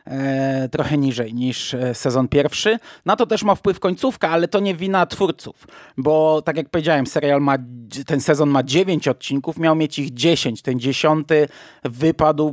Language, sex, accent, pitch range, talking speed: Polish, male, native, 135-185 Hz, 165 wpm